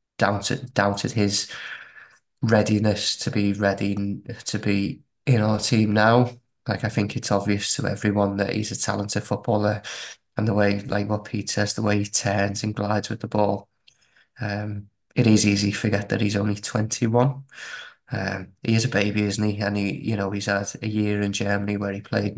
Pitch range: 100-115 Hz